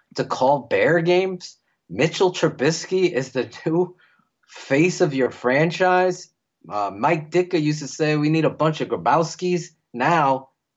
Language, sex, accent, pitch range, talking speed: English, male, American, 110-160 Hz, 145 wpm